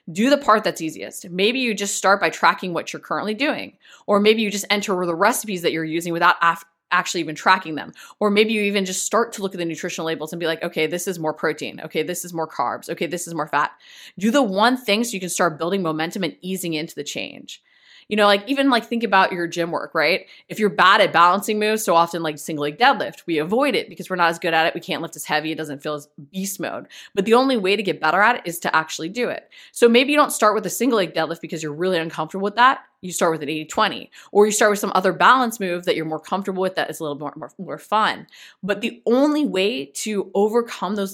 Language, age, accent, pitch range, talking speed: English, 20-39, American, 170-225 Hz, 265 wpm